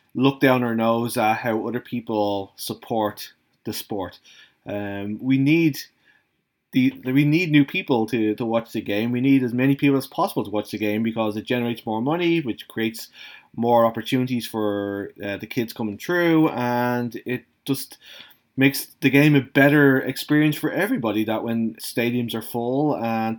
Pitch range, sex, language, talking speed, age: 110-140 Hz, male, English, 170 wpm, 20-39